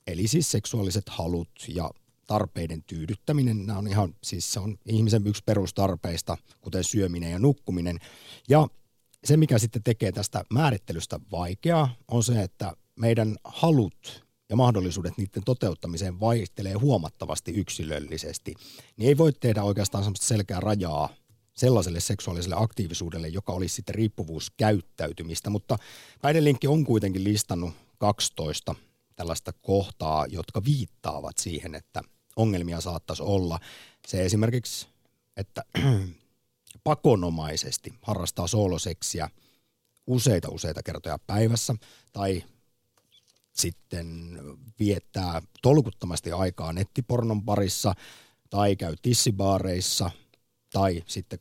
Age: 50-69